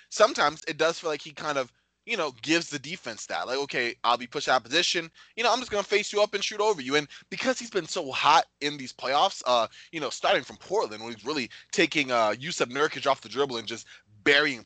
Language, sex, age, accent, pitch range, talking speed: English, male, 20-39, American, 125-165 Hz, 260 wpm